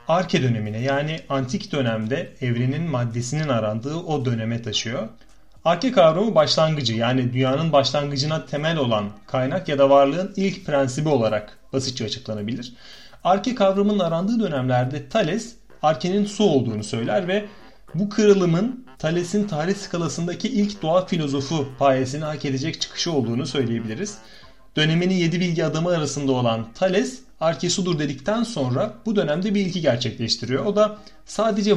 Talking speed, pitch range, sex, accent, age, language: 135 wpm, 130-190 Hz, male, native, 30-49, Turkish